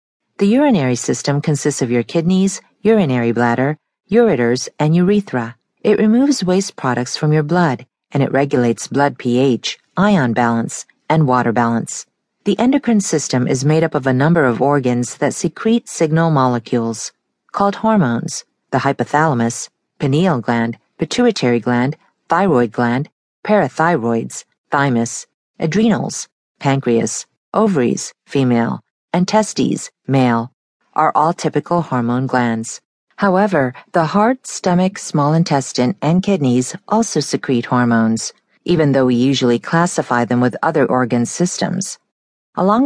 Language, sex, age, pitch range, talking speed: English, female, 50-69, 125-185 Hz, 125 wpm